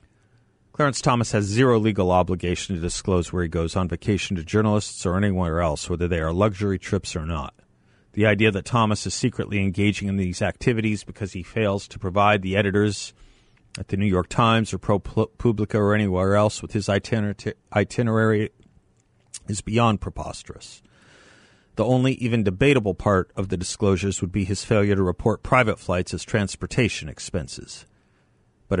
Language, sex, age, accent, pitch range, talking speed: English, male, 40-59, American, 95-115 Hz, 165 wpm